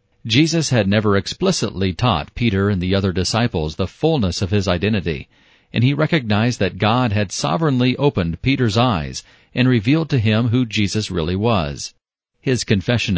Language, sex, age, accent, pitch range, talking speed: English, male, 40-59, American, 95-130 Hz, 160 wpm